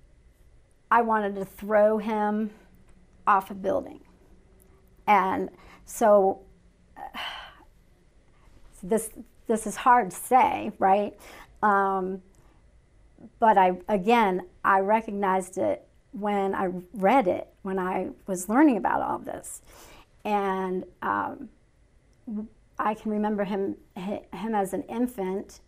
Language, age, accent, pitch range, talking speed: English, 40-59, American, 190-220 Hz, 110 wpm